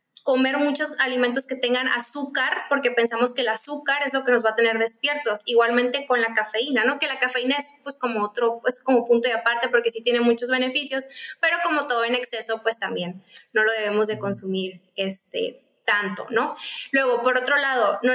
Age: 20-39